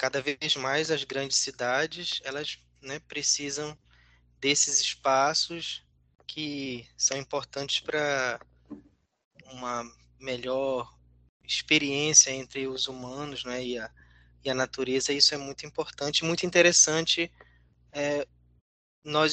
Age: 20-39